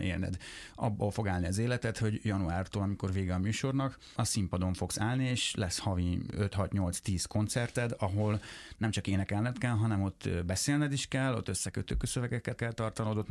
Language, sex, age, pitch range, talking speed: Hungarian, male, 30-49, 95-115 Hz, 160 wpm